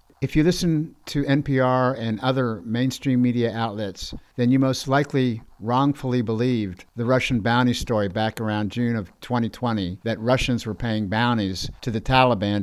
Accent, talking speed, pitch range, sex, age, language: American, 155 wpm, 105-125 Hz, male, 50-69, English